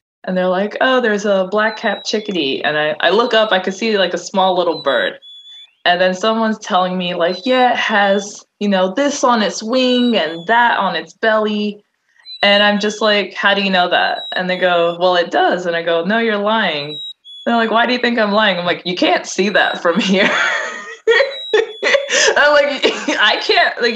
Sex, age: female, 20-39